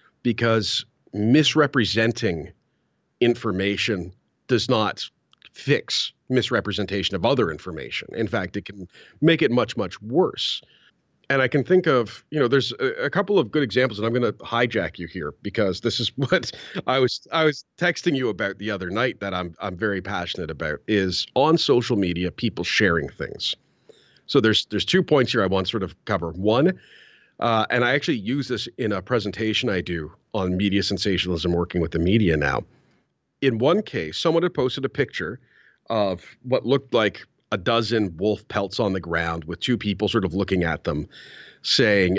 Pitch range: 95-125 Hz